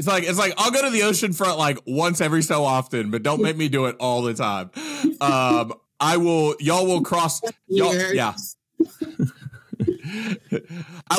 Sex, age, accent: male, 30-49, American